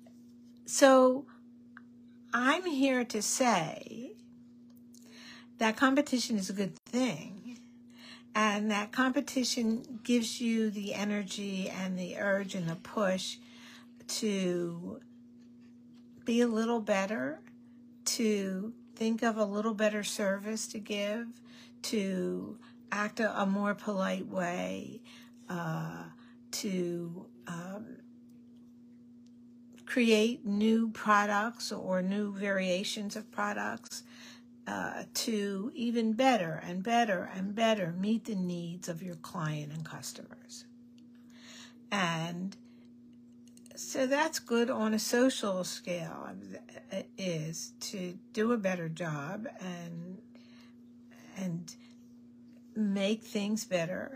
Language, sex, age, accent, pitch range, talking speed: English, female, 50-69, American, 195-240 Hz, 100 wpm